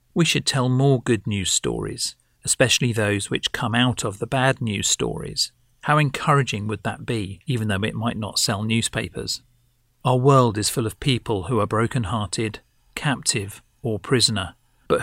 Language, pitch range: English, 110-125 Hz